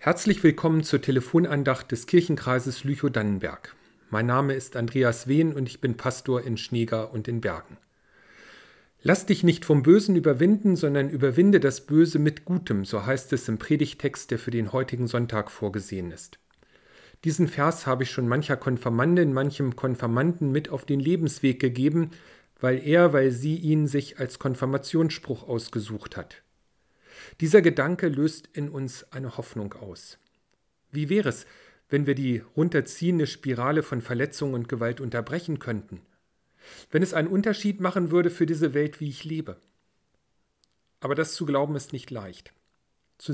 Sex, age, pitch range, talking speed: male, 40-59, 125-160 Hz, 155 wpm